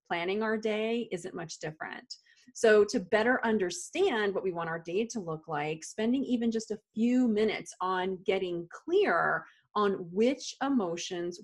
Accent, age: American, 30-49